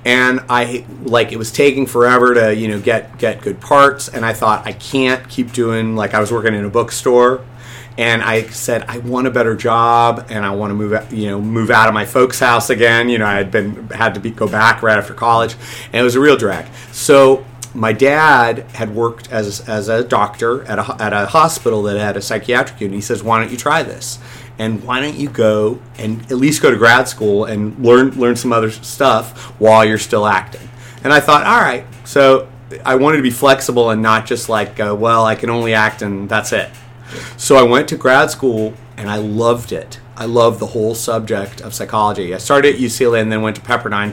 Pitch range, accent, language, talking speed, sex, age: 110-125 Hz, American, English, 230 wpm, male, 30-49